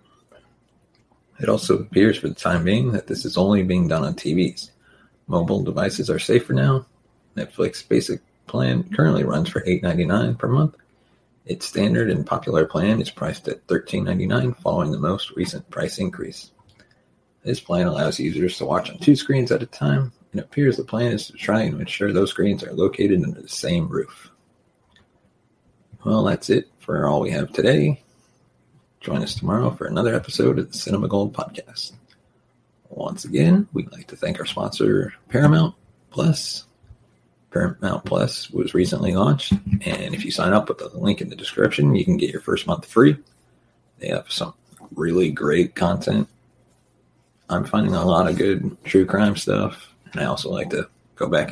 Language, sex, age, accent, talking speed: English, male, 30-49, American, 170 wpm